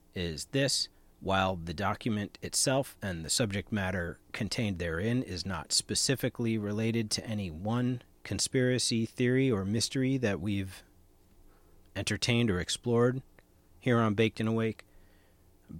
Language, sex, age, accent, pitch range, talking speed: English, male, 40-59, American, 85-105 Hz, 130 wpm